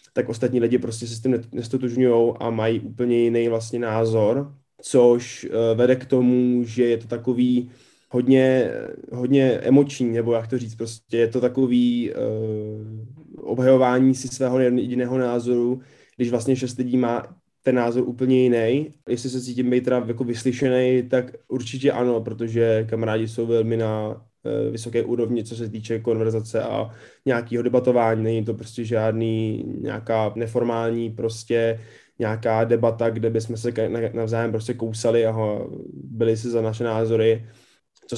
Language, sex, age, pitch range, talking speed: Czech, male, 20-39, 115-125 Hz, 145 wpm